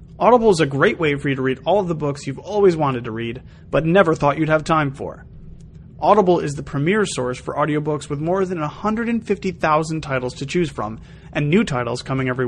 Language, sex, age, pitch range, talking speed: English, male, 30-49, 140-190 Hz, 215 wpm